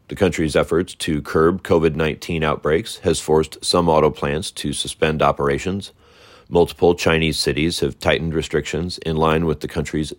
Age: 30-49